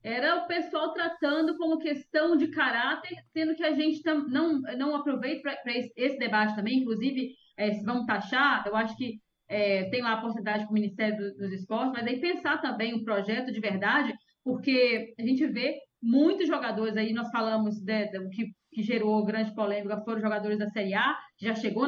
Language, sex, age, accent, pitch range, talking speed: Portuguese, female, 20-39, Brazilian, 220-290 Hz, 185 wpm